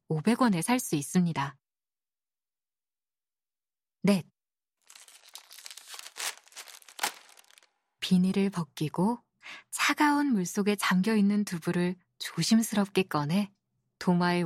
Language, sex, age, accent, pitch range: Korean, female, 20-39, native, 160-225 Hz